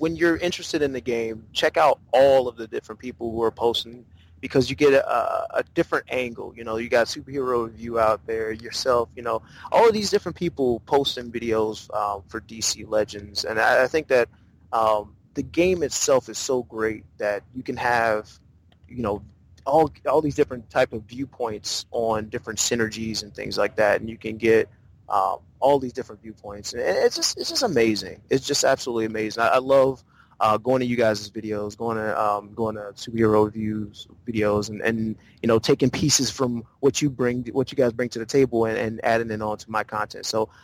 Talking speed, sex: 205 wpm, male